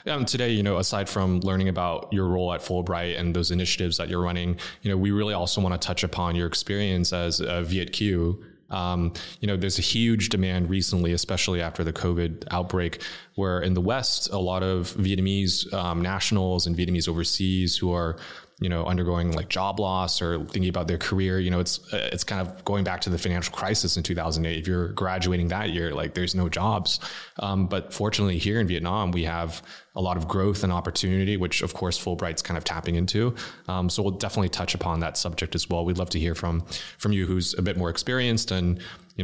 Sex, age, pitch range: male, 20-39, 85-95 Hz